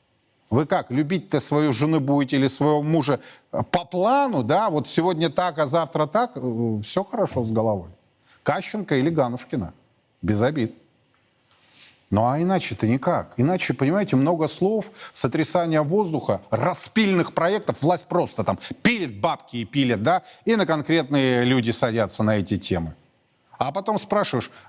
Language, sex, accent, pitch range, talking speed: Russian, male, native, 115-170 Hz, 140 wpm